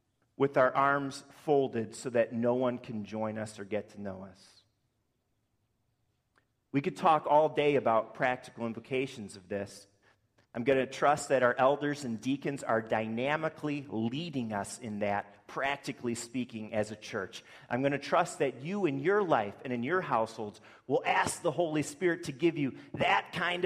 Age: 40-59